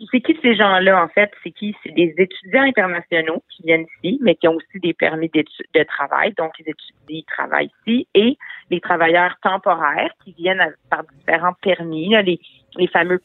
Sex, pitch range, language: female, 160-195 Hz, French